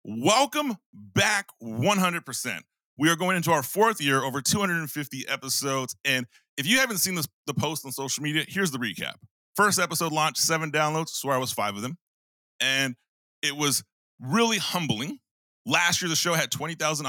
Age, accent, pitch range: 30-49, American, 135-170 Hz